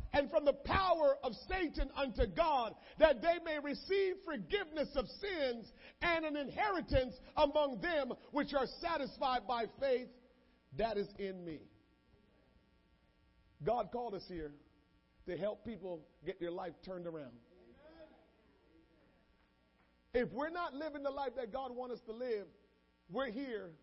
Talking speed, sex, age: 140 wpm, male, 50-69